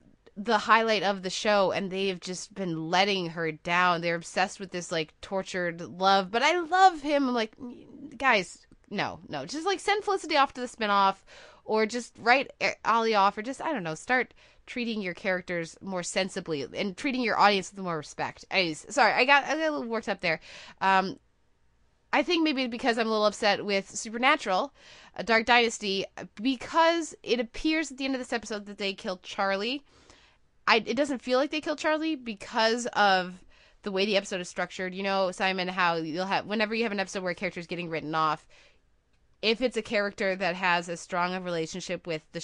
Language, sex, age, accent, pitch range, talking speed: English, female, 20-39, American, 180-240 Hz, 195 wpm